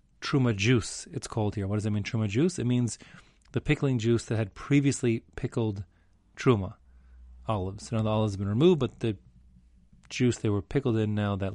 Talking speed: 190 wpm